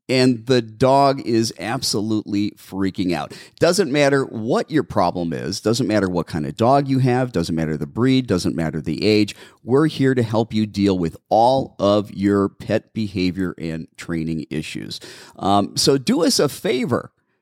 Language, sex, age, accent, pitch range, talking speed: English, male, 40-59, American, 95-130 Hz, 170 wpm